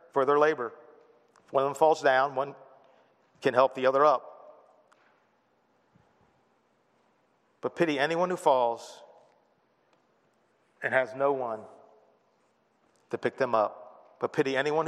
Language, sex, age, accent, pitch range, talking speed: English, male, 40-59, American, 120-155 Hz, 125 wpm